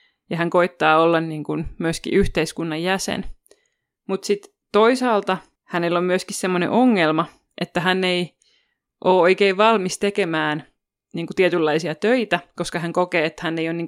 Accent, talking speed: native, 155 wpm